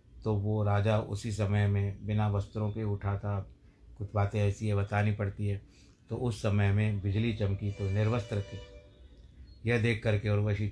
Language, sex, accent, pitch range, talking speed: Hindi, male, native, 100-115 Hz, 170 wpm